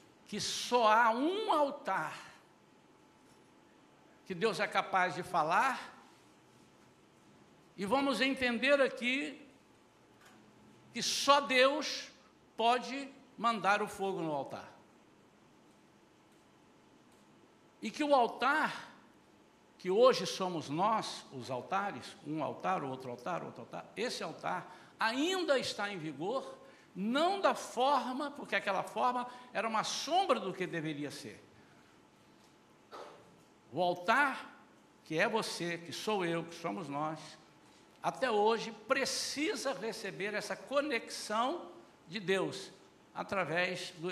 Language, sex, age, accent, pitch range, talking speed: Portuguese, male, 60-79, Brazilian, 180-255 Hz, 110 wpm